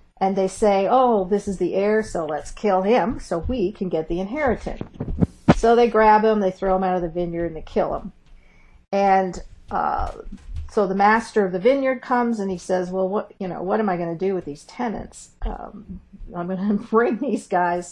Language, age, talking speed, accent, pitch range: English, 50-69, 220 wpm, American, 180-215 Hz